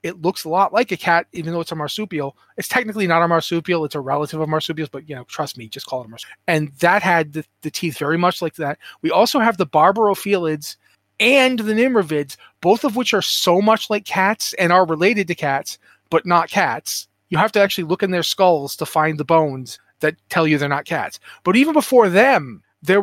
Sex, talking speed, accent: male, 230 wpm, American